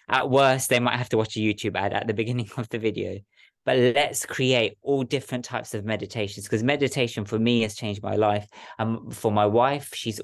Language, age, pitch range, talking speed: English, 20-39, 105-125 Hz, 215 wpm